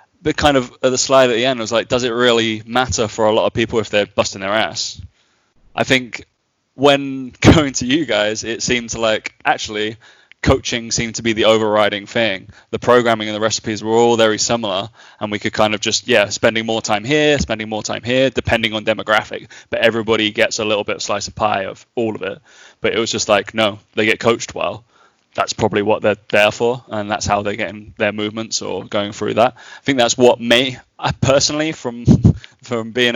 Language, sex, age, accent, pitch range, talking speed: English, male, 20-39, British, 105-125 Hz, 215 wpm